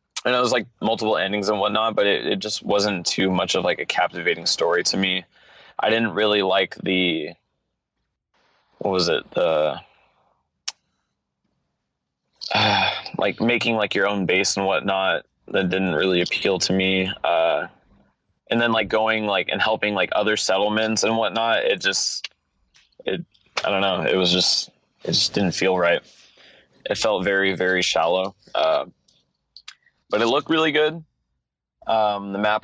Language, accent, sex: English, American, male